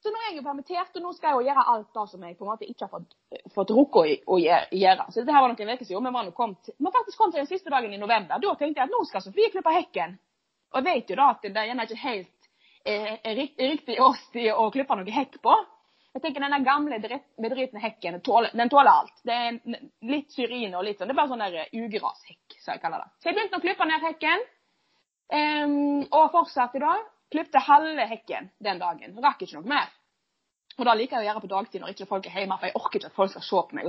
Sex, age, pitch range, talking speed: female, 30-49, 205-310 Hz, 260 wpm